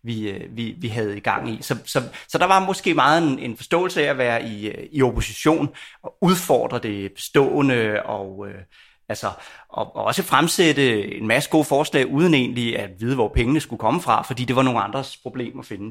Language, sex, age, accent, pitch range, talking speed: Danish, male, 30-49, native, 115-155 Hz, 210 wpm